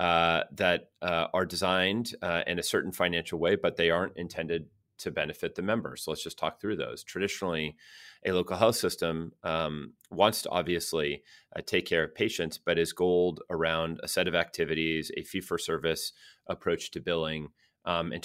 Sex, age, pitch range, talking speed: male, 30-49, 80-90 Hz, 180 wpm